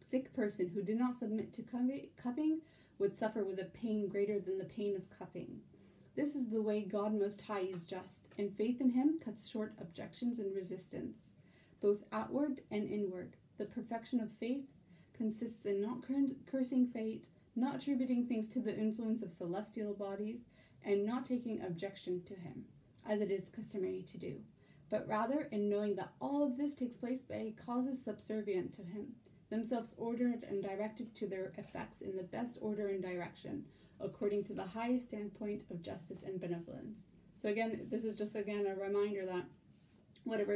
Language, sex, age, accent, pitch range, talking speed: English, female, 30-49, American, 200-240 Hz, 175 wpm